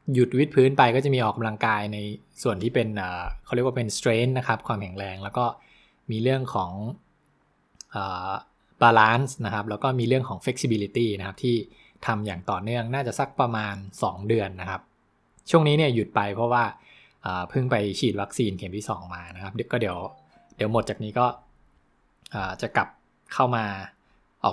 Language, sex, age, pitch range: English, male, 20-39, 100-125 Hz